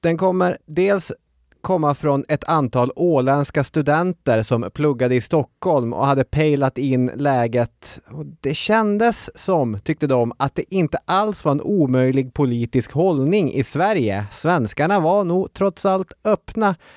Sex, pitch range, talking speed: male, 120-150 Hz, 140 wpm